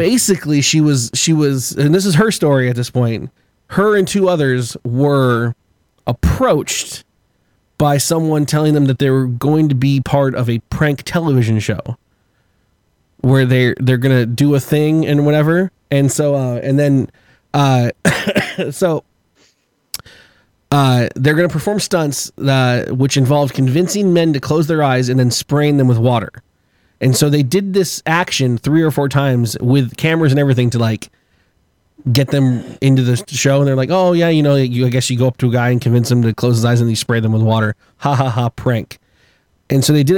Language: English